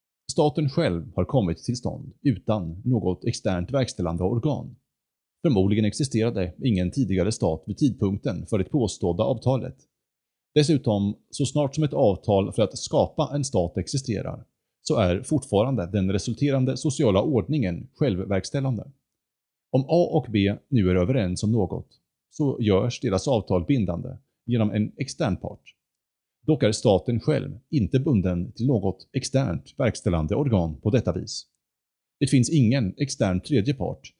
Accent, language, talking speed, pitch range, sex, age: Norwegian, Swedish, 140 wpm, 95-135 Hz, male, 30-49